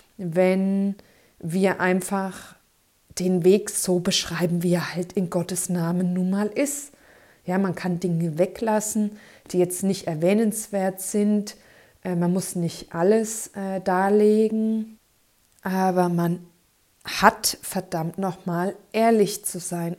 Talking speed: 115 wpm